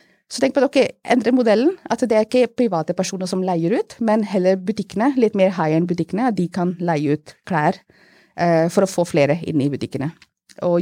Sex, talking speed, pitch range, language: female, 205 wpm, 170-230 Hz, English